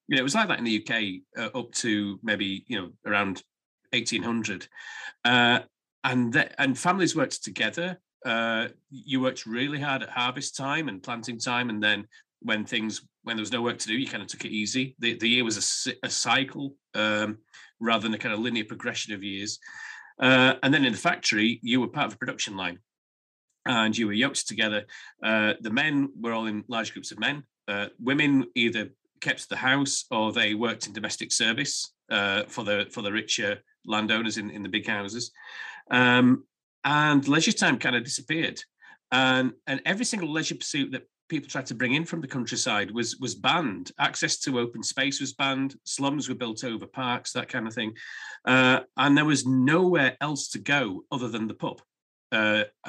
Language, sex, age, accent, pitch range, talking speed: English, male, 30-49, British, 110-140 Hz, 195 wpm